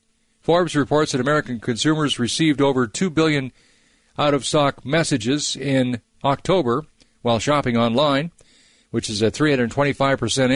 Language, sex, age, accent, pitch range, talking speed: English, male, 50-69, American, 115-145 Hz, 115 wpm